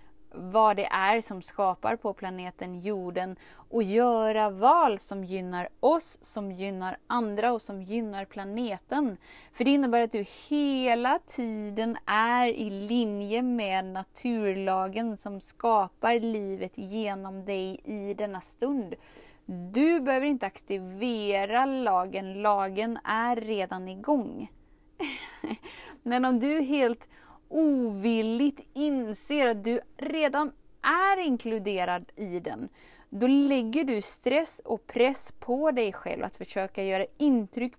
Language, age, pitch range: Swedish, 20-39, 195-250 Hz